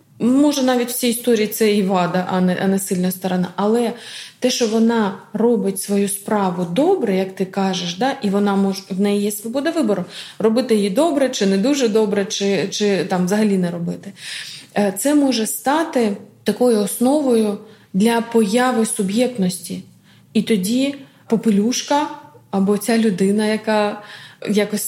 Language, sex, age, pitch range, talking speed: Ukrainian, female, 20-39, 195-235 Hz, 150 wpm